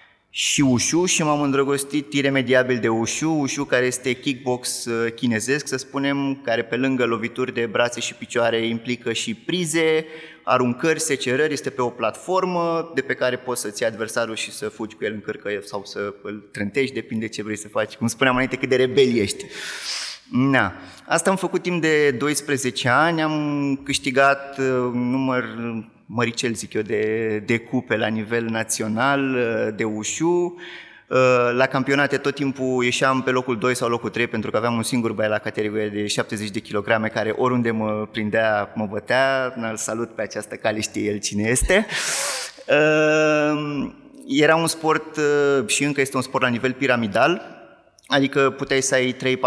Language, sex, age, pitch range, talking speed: Romanian, male, 20-39, 115-140 Hz, 165 wpm